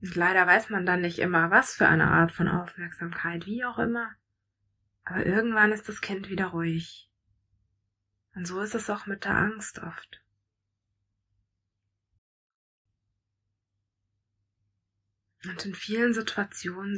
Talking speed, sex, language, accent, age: 125 wpm, female, German, German, 20-39